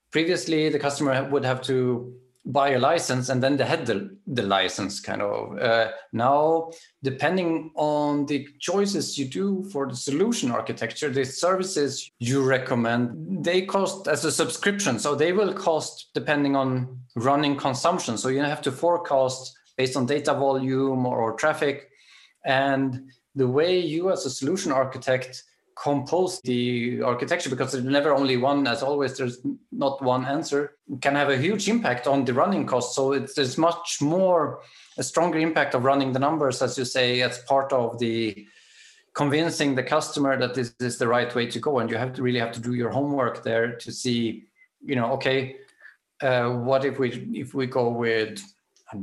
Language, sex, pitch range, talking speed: English, male, 125-155 Hz, 180 wpm